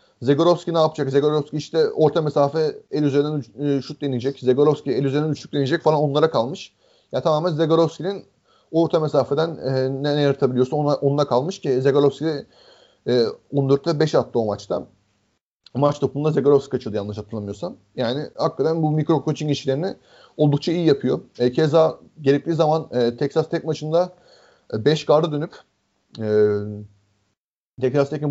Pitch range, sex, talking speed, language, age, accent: 130-155 Hz, male, 155 wpm, Turkish, 30-49, native